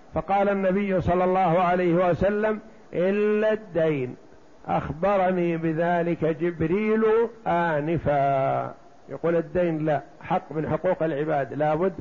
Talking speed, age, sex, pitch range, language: 105 wpm, 60-79, male, 155-185 Hz, Arabic